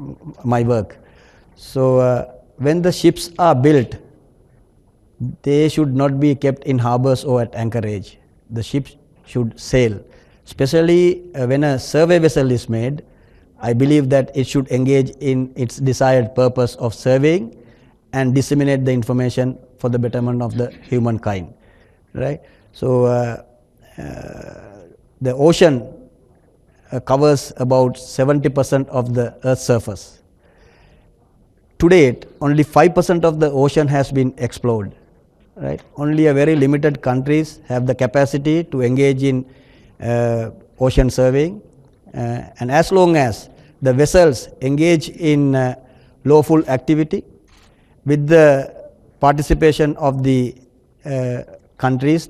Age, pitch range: 60-79, 120-145 Hz